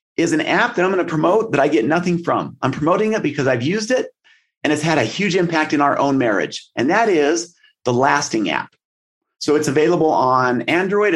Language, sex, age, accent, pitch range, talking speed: English, male, 30-49, American, 145-200 Hz, 220 wpm